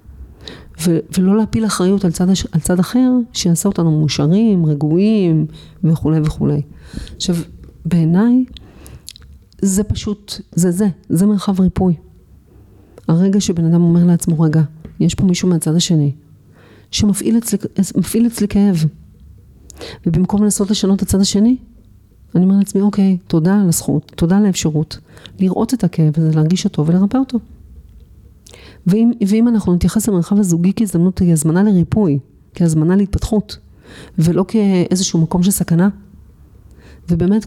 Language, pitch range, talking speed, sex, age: Hebrew, 155-200 Hz, 125 wpm, female, 40-59